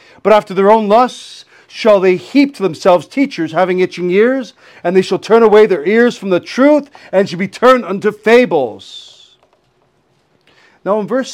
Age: 40-59